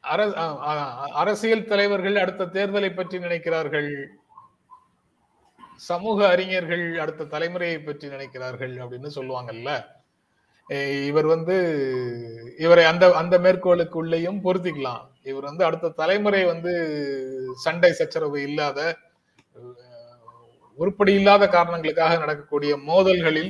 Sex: male